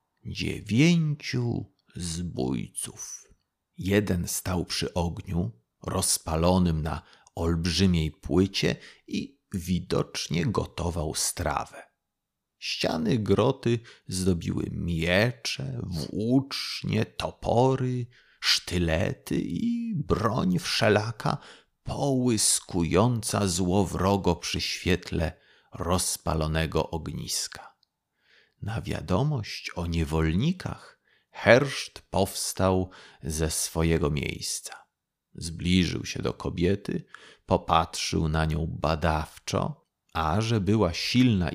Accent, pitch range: native, 85-120 Hz